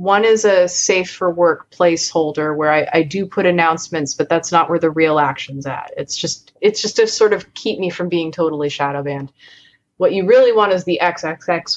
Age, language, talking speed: 30-49, English, 215 wpm